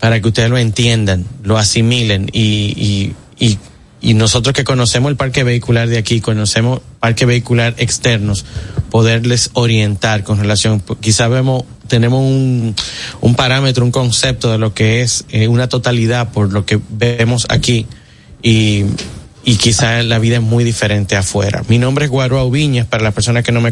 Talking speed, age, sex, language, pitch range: 170 wpm, 30-49, male, Spanish, 110-125 Hz